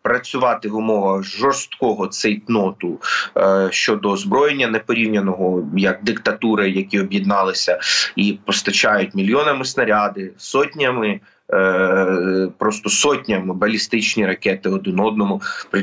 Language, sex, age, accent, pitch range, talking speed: Ukrainian, male, 30-49, native, 100-125 Hz, 95 wpm